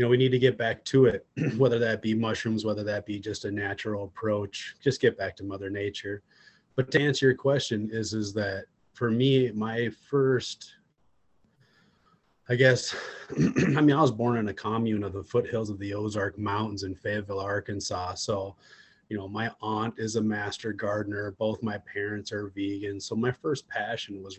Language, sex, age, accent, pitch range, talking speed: English, male, 30-49, American, 100-115 Hz, 190 wpm